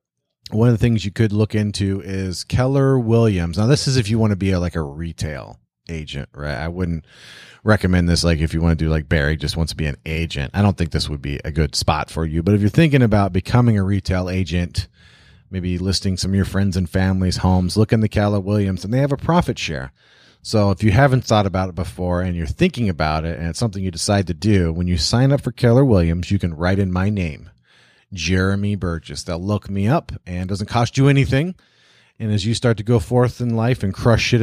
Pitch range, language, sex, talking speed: 85-115 Hz, English, male, 240 wpm